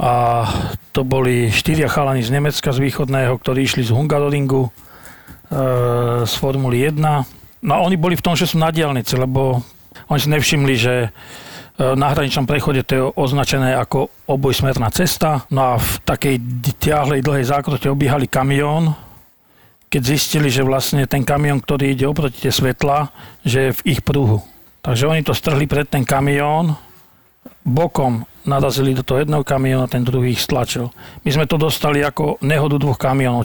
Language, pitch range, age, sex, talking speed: Slovak, 130-145 Hz, 40-59, male, 165 wpm